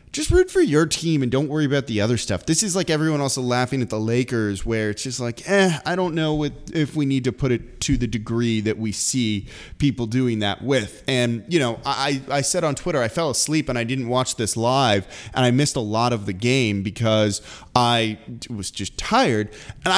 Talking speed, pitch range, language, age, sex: 230 wpm, 110-145 Hz, English, 20-39, male